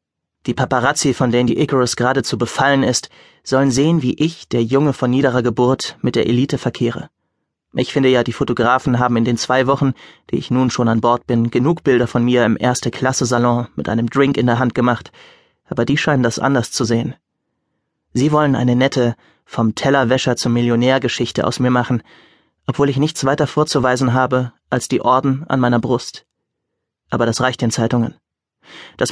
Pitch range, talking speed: 120-135 Hz, 185 wpm